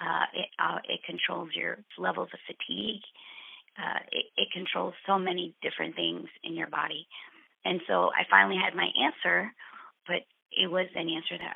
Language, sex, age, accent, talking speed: English, female, 30-49, American, 170 wpm